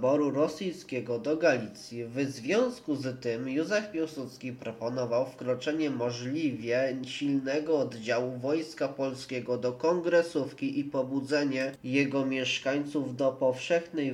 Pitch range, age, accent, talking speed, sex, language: 120-140 Hz, 20-39, native, 100 wpm, male, Polish